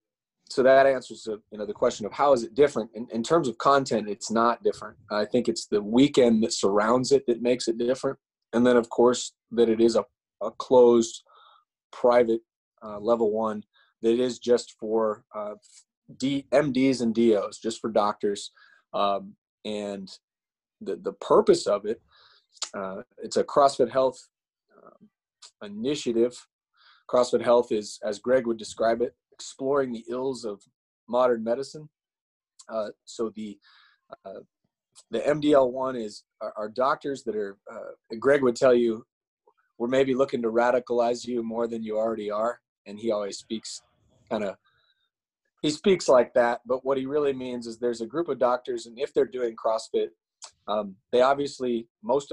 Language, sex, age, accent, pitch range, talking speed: English, male, 20-39, American, 115-135 Hz, 165 wpm